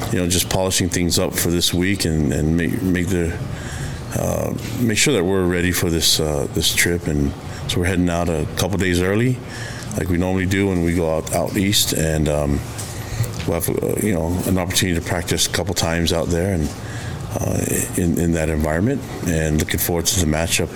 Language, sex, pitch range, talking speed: English, male, 85-110 Hz, 210 wpm